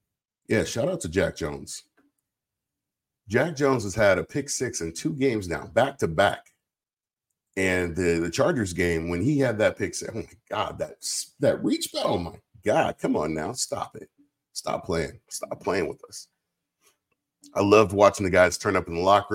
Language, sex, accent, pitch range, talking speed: English, male, American, 95-125 Hz, 190 wpm